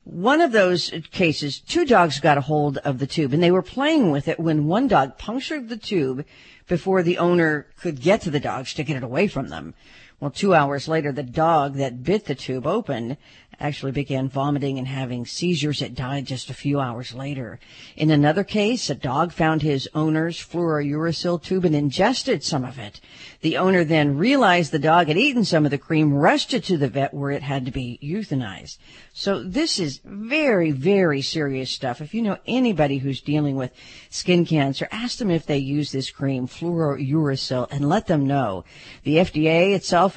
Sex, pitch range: female, 140-180 Hz